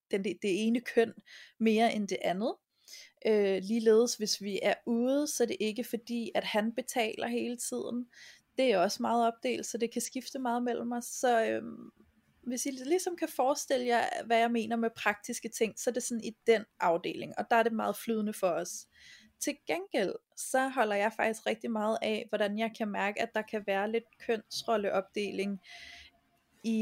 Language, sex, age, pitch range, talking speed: Danish, female, 20-39, 205-240 Hz, 180 wpm